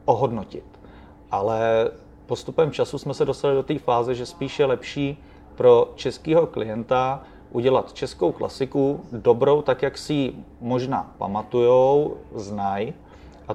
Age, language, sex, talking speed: 30-49, Czech, male, 125 wpm